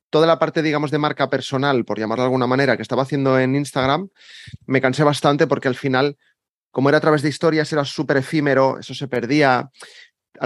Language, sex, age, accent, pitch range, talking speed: Spanish, male, 30-49, Spanish, 115-145 Hz, 205 wpm